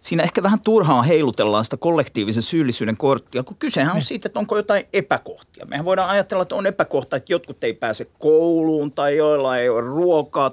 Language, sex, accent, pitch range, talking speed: Finnish, male, native, 125-175 Hz, 190 wpm